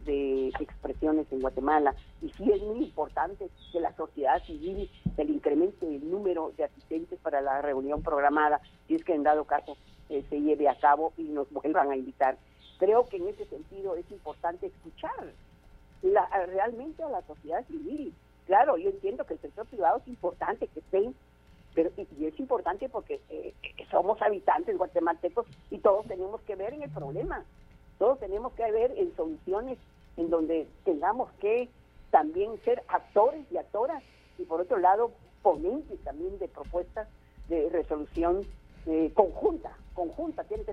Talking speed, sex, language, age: 160 wpm, female, Spanish, 50-69